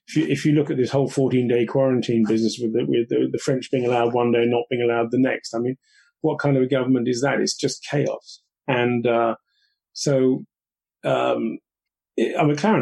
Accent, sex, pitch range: British, male, 120-145 Hz